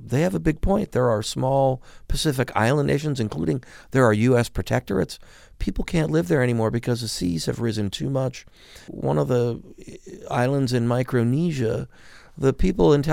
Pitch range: 105-135 Hz